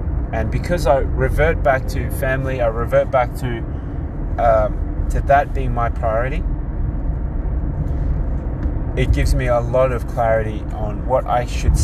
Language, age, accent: English, 20-39, Australian